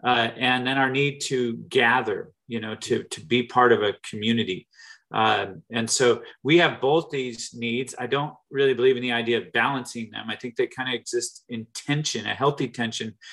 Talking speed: 205 wpm